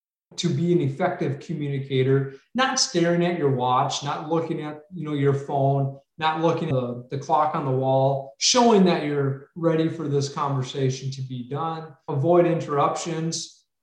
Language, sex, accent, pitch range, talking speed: English, male, American, 140-180 Hz, 165 wpm